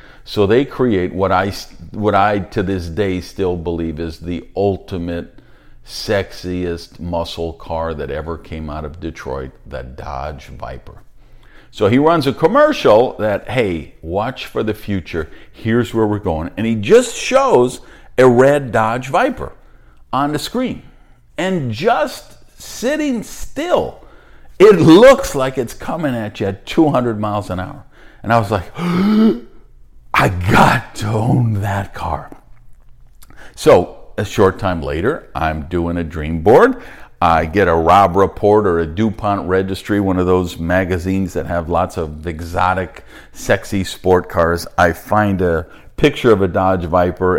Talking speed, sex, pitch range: 150 wpm, male, 85-115 Hz